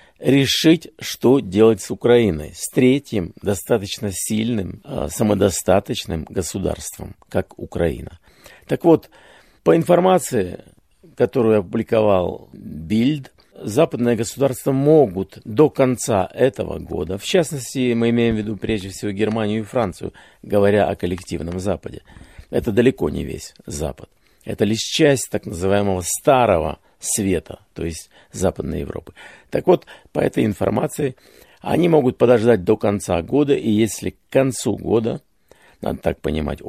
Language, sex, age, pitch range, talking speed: Russian, male, 50-69, 95-125 Hz, 125 wpm